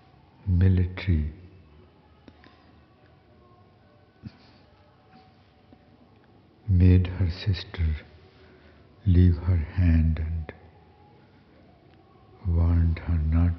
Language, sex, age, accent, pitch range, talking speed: English, male, 60-79, Indian, 90-110 Hz, 50 wpm